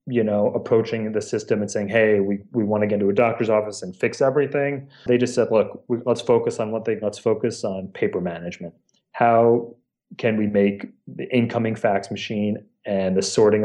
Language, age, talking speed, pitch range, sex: English, 30-49, 200 wpm, 100-120 Hz, male